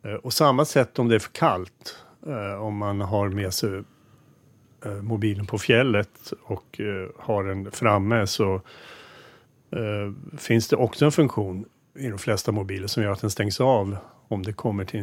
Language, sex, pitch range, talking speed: Swedish, male, 100-125 Hz, 160 wpm